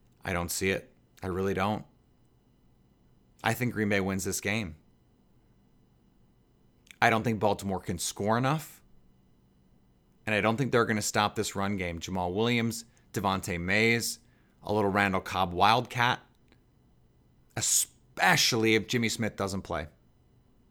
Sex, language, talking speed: male, English, 135 wpm